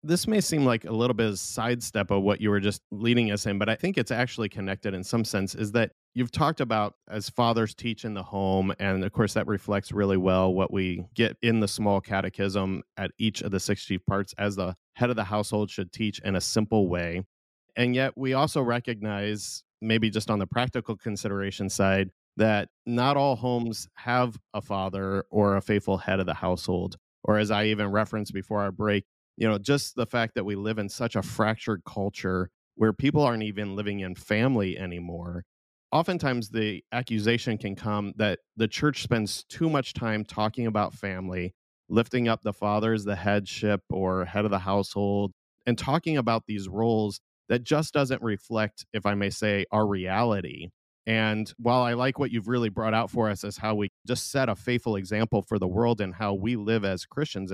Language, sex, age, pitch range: English, male, 30-49, 100-115 Hz